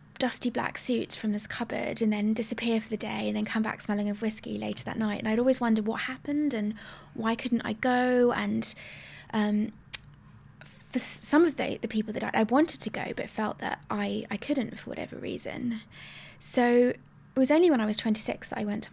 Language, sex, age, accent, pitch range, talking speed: English, female, 20-39, British, 210-245 Hz, 215 wpm